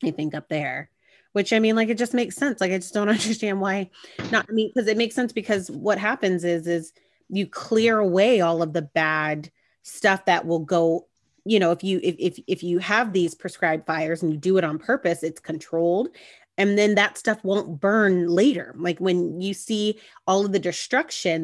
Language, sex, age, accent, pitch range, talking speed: English, female, 30-49, American, 165-205 Hz, 215 wpm